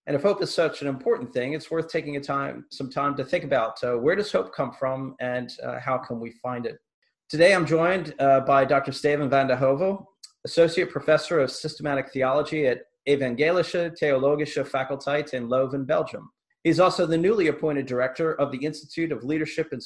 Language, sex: English, male